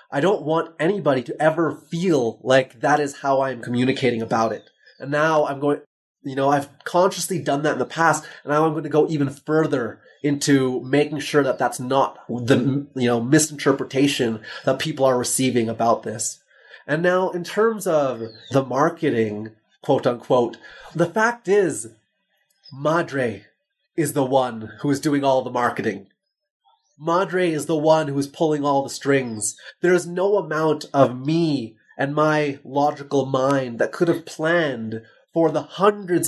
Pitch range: 130-170 Hz